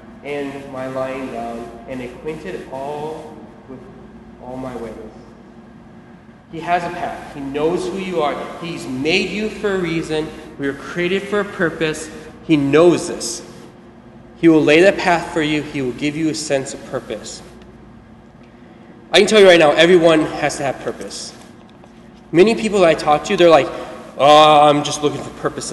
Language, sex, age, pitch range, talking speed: English, male, 20-39, 130-180 Hz, 175 wpm